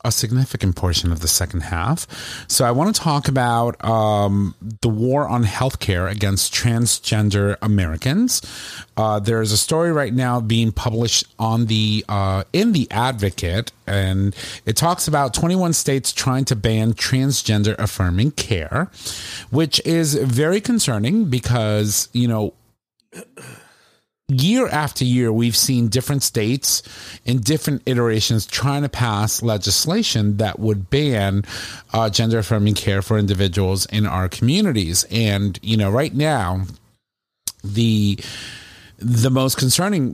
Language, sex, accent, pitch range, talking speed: English, male, American, 100-125 Hz, 135 wpm